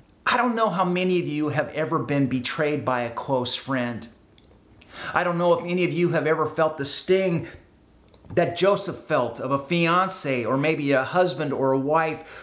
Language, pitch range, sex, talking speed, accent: English, 140-210 Hz, male, 195 wpm, American